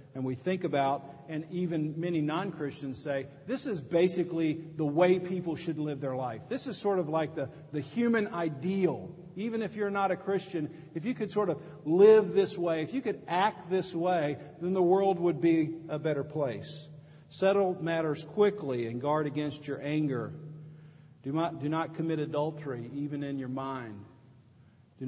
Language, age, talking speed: English, 50-69, 175 wpm